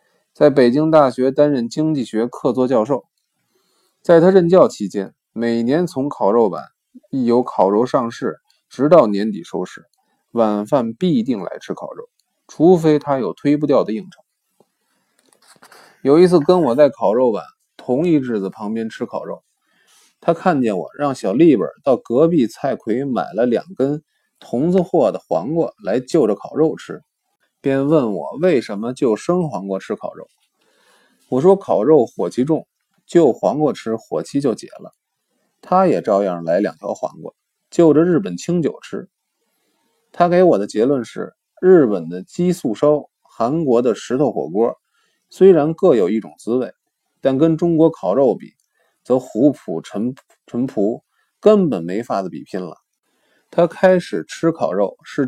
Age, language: 20-39, Chinese